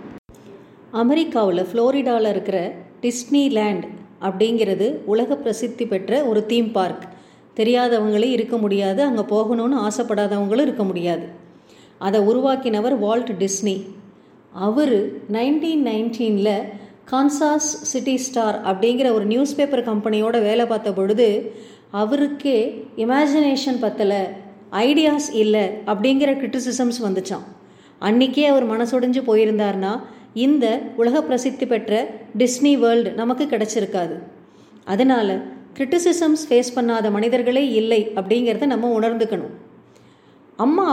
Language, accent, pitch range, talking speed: Tamil, native, 210-265 Hz, 100 wpm